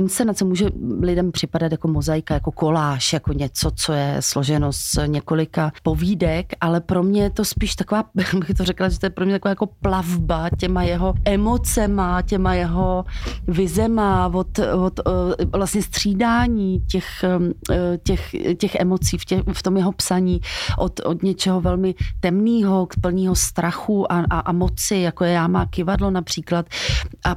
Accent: native